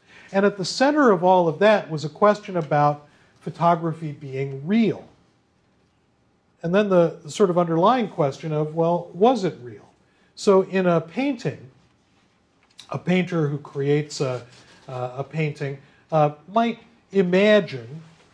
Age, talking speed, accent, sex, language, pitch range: 40-59, 135 wpm, American, male, English, 135-170 Hz